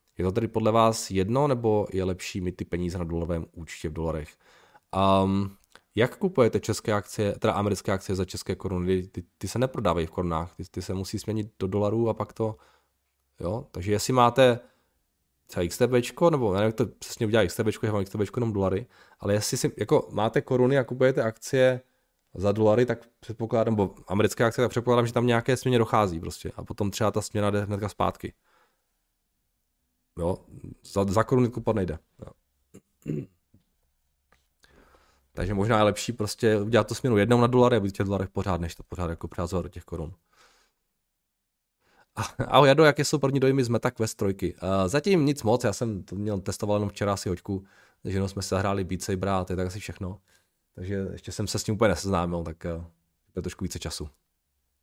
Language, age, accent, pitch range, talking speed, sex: Czech, 20-39, native, 90-115 Hz, 185 wpm, male